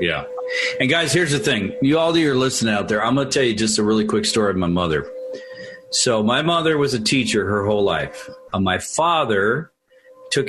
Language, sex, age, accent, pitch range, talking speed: English, male, 40-59, American, 105-135 Hz, 215 wpm